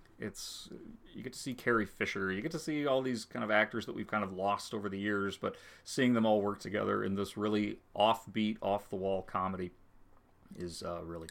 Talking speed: 205 wpm